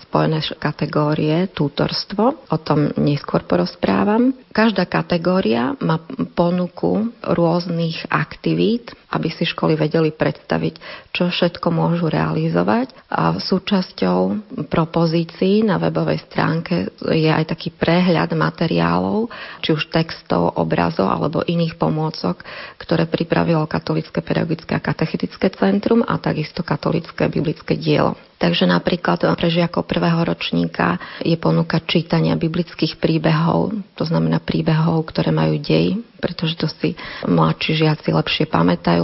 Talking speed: 115 wpm